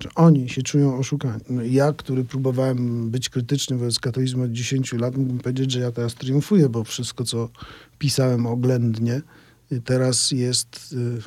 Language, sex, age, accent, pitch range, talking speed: Polish, male, 50-69, native, 125-150 Hz, 145 wpm